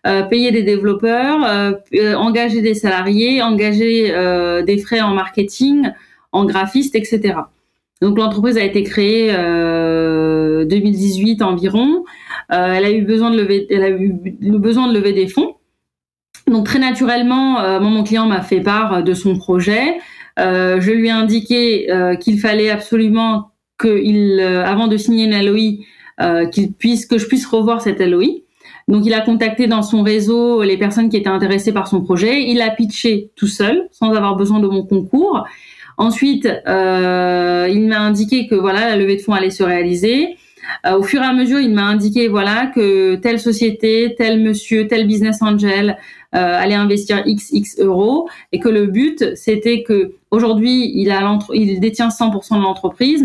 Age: 30-49